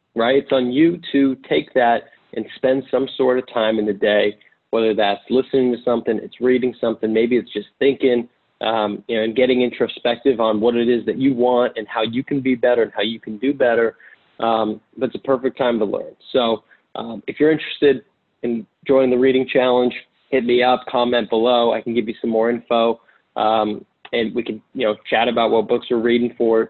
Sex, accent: male, American